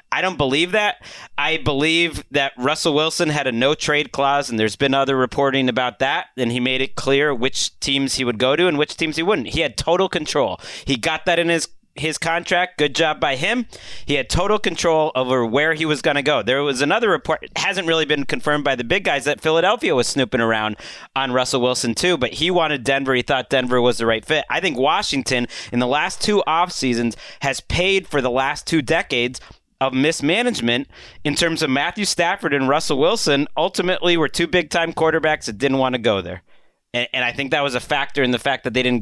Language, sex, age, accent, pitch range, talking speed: English, male, 30-49, American, 125-170 Hz, 225 wpm